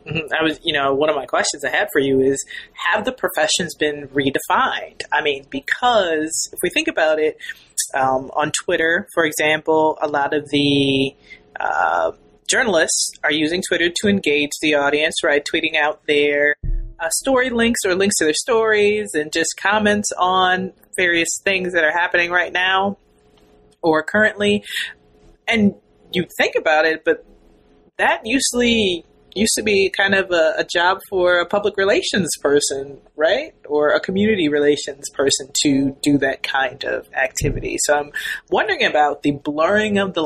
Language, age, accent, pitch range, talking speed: English, 30-49, American, 145-200 Hz, 165 wpm